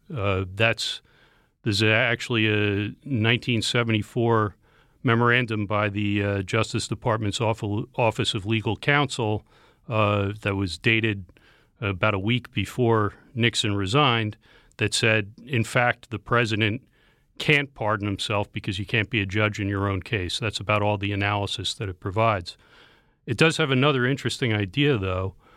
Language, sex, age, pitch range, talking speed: English, male, 40-59, 100-115 Hz, 140 wpm